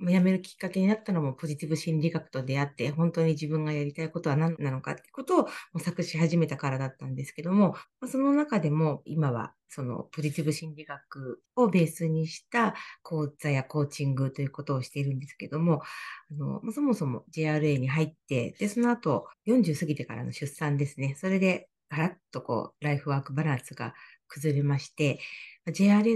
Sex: female